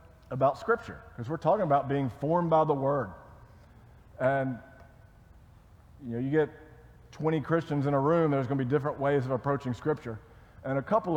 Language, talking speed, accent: English, 175 wpm, American